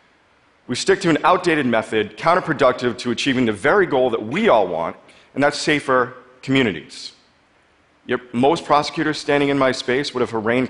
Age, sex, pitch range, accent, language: 40-59, male, 125-155 Hz, American, Chinese